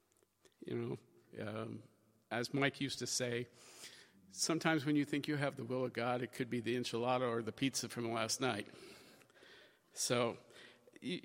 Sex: male